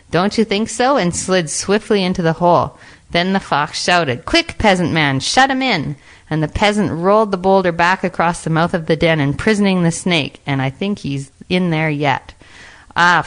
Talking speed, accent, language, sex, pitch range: 200 wpm, American, English, female, 145-190 Hz